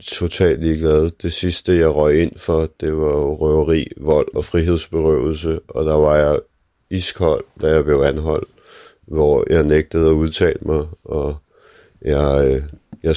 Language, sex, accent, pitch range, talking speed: Danish, male, native, 75-90 Hz, 145 wpm